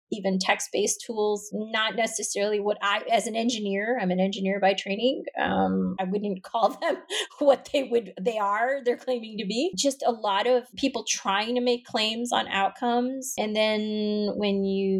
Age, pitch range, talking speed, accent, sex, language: 30-49, 190-235 Hz, 175 wpm, American, female, English